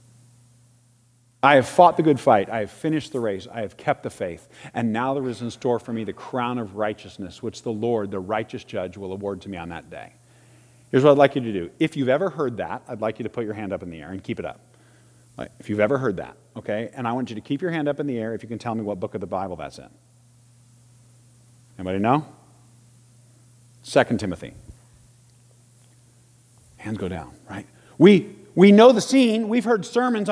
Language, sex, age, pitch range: English, male, 50-69, 115-175 Hz